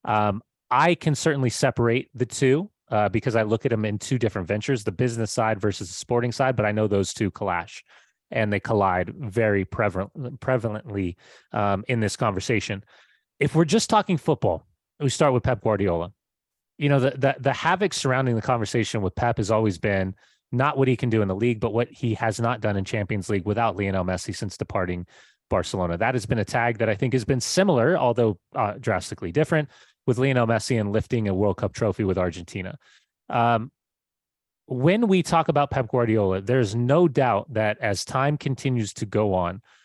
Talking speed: 195 wpm